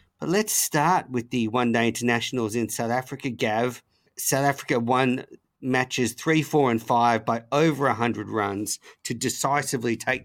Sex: male